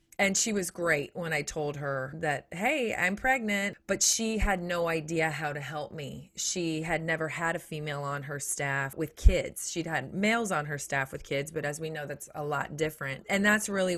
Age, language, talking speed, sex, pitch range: 30-49, English, 220 wpm, female, 150-185 Hz